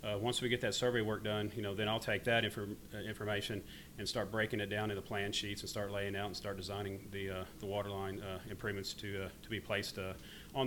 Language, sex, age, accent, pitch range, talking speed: English, male, 40-59, American, 100-115 Hz, 260 wpm